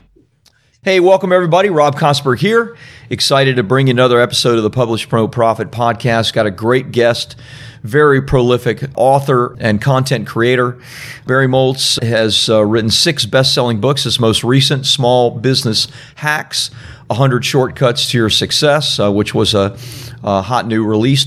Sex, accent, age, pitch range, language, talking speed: male, American, 40-59, 115-140 Hz, English, 155 wpm